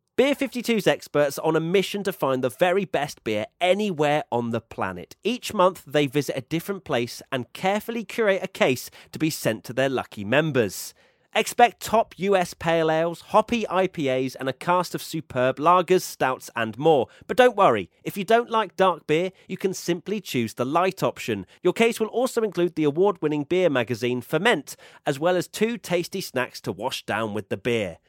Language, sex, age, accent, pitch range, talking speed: English, male, 30-49, British, 125-185 Hz, 190 wpm